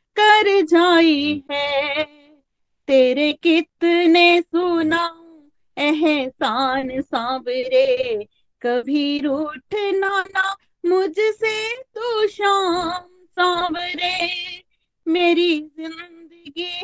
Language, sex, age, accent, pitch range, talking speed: Hindi, female, 30-49, native, 340-415 Hz, 70 wpm